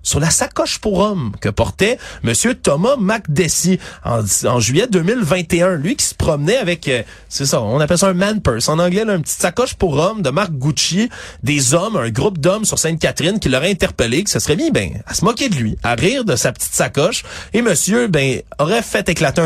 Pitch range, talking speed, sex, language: 135-190 Hz, 215 wpm, male, French